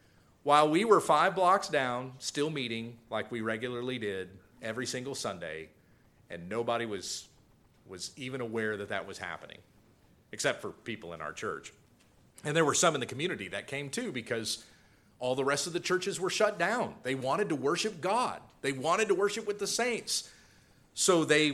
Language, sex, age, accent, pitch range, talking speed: English, male, 40-59, American, 125-185 Hz, 180 wpm